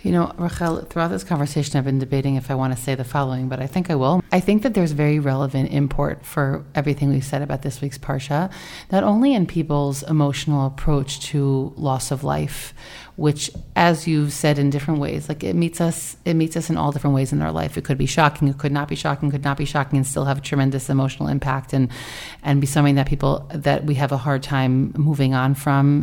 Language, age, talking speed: English, 30-49, 235 wpm